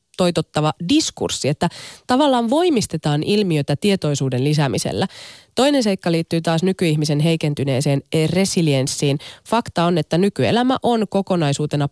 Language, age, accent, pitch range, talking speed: Finnish, 20-39, native, 140-185 Hz, 105 wpm